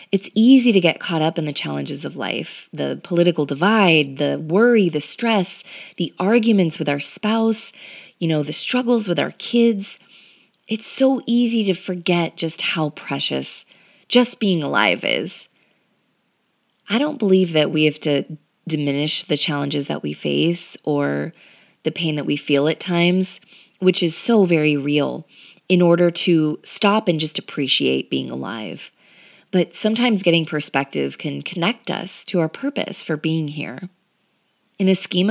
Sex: female